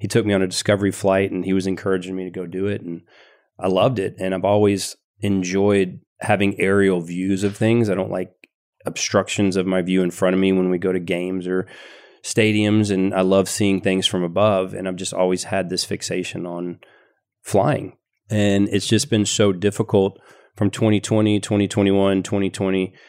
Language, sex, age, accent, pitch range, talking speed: English, male, 30-49, American, 95-105 Hz, 185 wpm